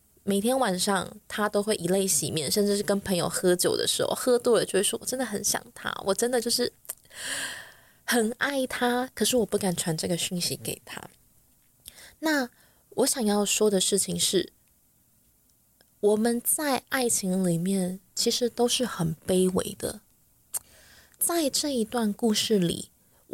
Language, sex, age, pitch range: Chinese, female, 20-39, 185-235 Hz